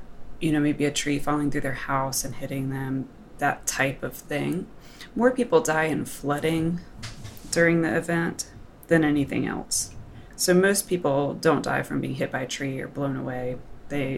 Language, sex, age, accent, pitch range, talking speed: English, female, 20-39, American, 140-170 Hz, 180 wpm